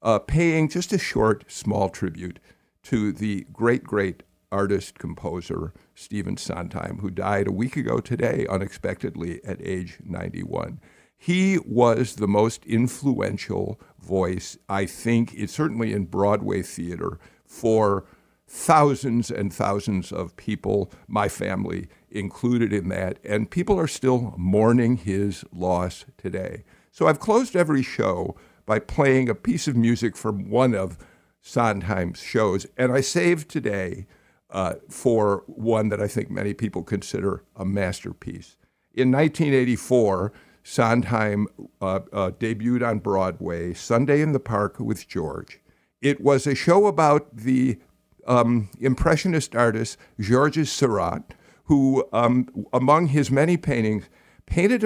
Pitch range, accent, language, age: 100-135 Hz, American, English, 50-69